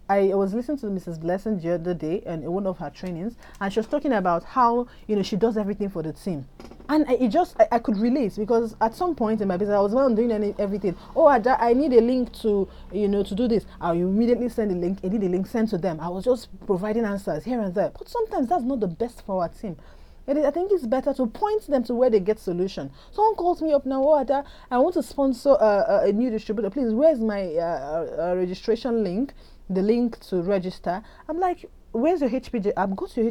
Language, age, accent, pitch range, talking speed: English, 30-49, Nigerian, 190-280 Hz, 240 wpm